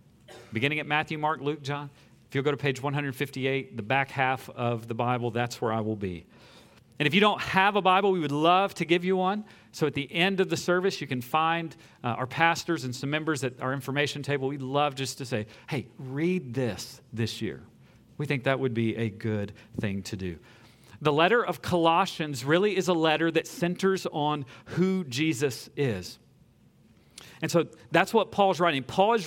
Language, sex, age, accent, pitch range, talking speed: English, male, 40-59, American, 135-195 Hz, 200 wpm